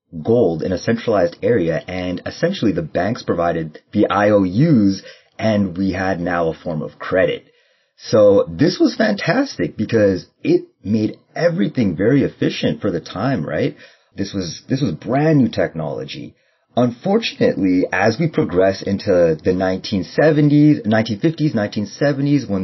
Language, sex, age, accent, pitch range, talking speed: English, male, 30-49, American, 95-145 Hz, 135 wpm